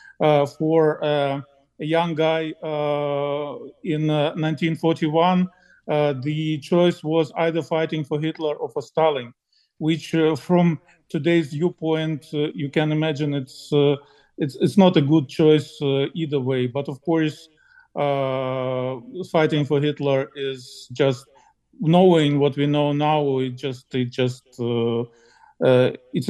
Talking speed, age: 140 wpm, 50-69